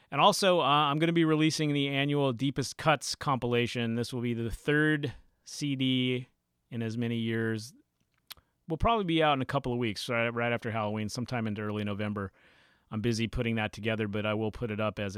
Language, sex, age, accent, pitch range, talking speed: English, male, 30-49, American, 105-140 Hz, 200 wpm